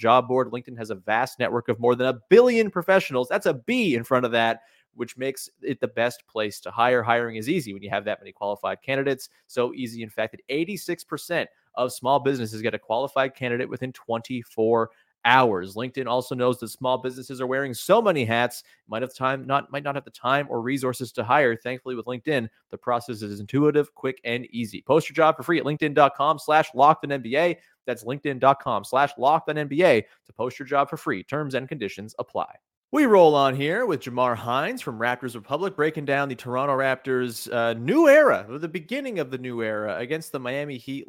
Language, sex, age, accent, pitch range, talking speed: English, male, 30-49, American, 120-145 Hz, 205 wpm